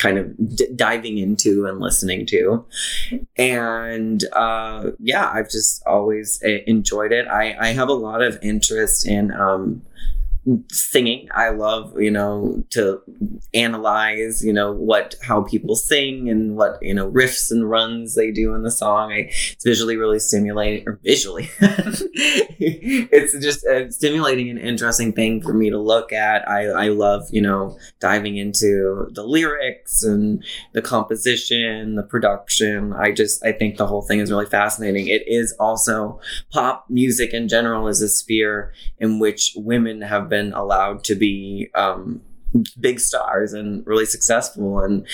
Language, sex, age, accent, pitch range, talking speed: English, male, 20-39, American, 105-120 Hz, 155 wpm